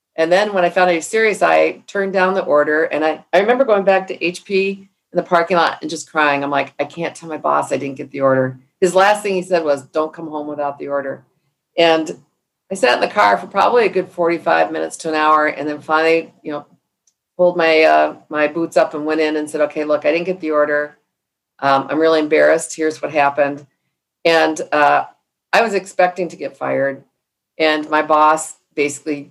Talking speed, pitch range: 225 wpm, 150-180 Hz